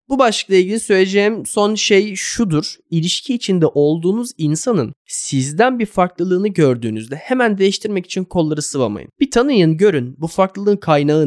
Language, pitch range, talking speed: Turkish, 135-210 Hz, 140 wpm